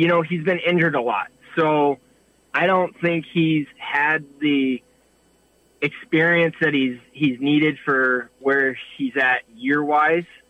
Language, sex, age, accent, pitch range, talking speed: English, male, 20-39, American, 125-150 Hz, 135 wpm